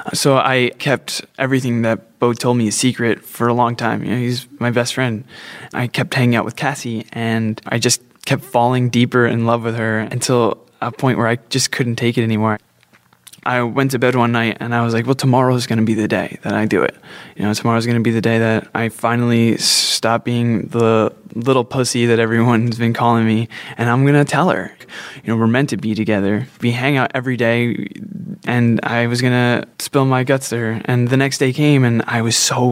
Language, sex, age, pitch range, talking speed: English, male, 20-39, 105-125 Hz, 225 wpm